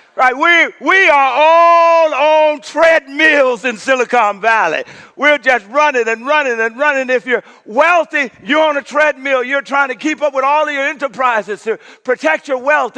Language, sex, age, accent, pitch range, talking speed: English, male, 50-69, American, 255-315 Hz, 175 wpm